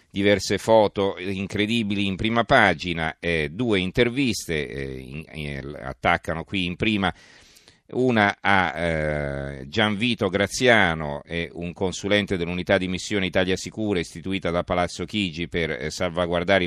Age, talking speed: 40-59, 125 wpm